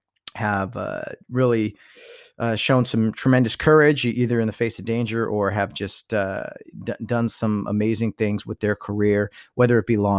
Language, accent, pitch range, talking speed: English, American, 105-135 Hz, 170 wpm